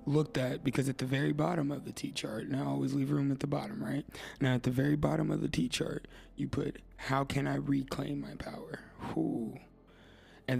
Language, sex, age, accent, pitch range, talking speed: English, male, 20-39, American, 115-145 Hz, 210 wpm